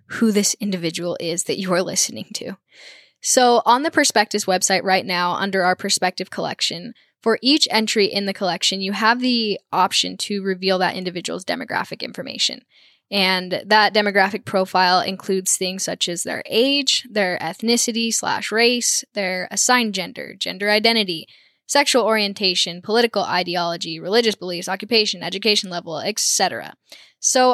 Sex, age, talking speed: female, 10-29, 145 wpm